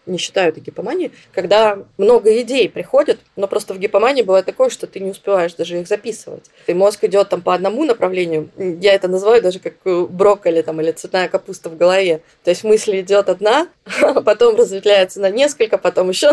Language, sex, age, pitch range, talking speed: Russian, female, 20-39, 175-220 Hz, 190 wpm